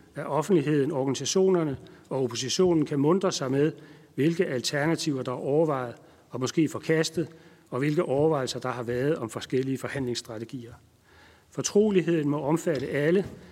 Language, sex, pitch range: Danish, male, 125-160 Hz